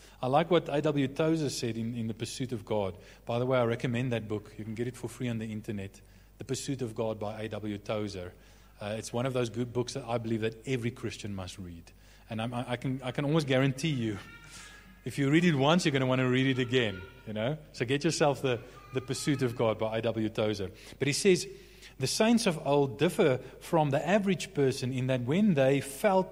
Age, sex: 30-49, male